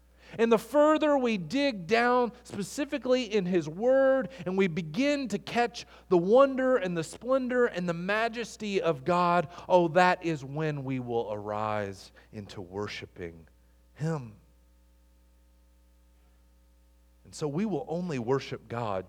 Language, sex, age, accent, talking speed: English, male, 40-59, American, 130 wpm